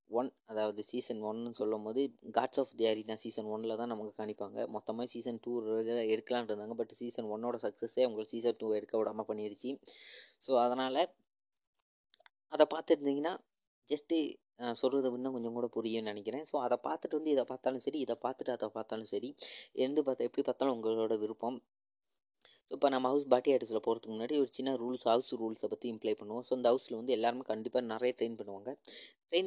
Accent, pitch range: native, 110-130 Hz